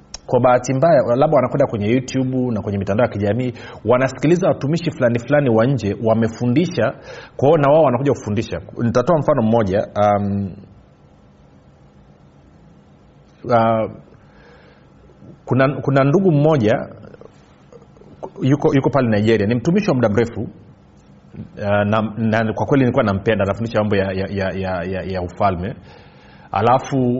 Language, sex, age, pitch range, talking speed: Swahili, male, 40-59, 105-145 Hz, 120 wpm